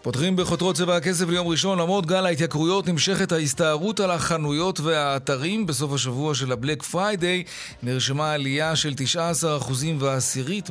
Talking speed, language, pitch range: 135 wpm, Hebrew, 130-175 Hz